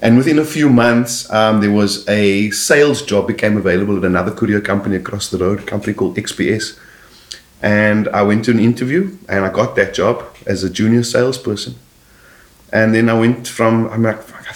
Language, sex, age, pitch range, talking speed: English, male, 30-49, 95-120 Hz, 195 wpm